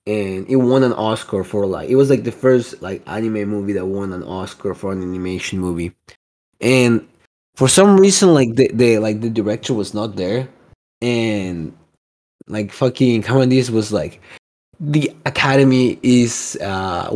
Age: 20-39